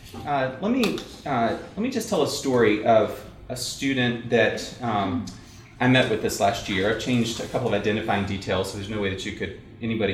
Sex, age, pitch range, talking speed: male, 30-49, 100-130 Hz, 215 wpm